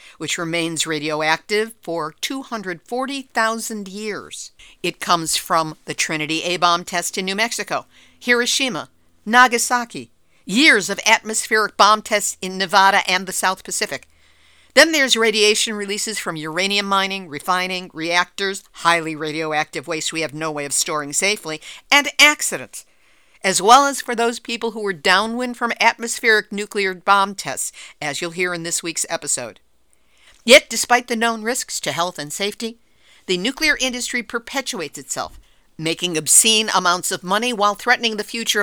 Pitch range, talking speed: 175-235 Hz, 145 wpm